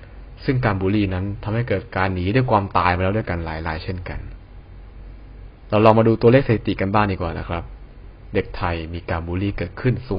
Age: 20-39